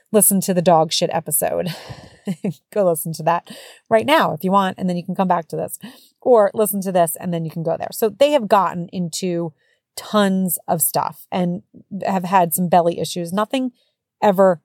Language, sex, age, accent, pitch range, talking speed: English, female, 30-49, American, 165-210 Hz, 200 wpm